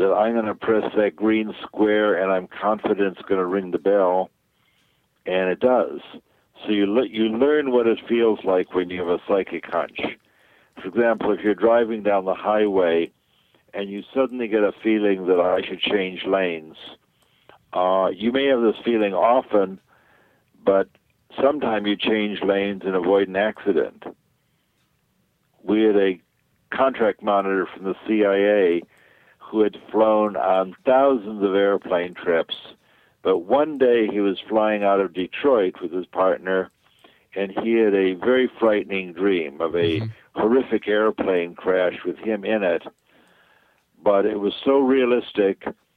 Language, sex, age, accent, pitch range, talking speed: English, male, 60-79, American, 95-110 Hz, 155 wpm